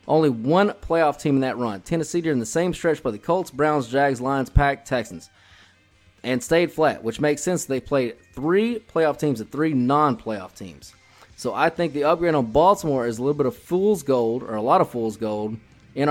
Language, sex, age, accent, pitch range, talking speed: English, male, 30-49, American, 115-155 Hz, 210 wpm